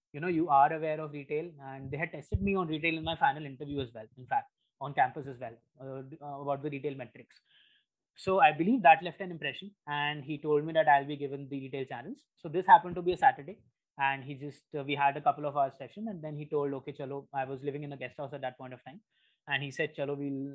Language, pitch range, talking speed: English, 140-165 Hz, 265 wpm